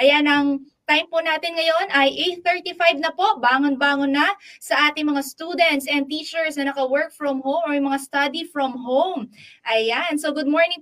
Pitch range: 275-330 Hz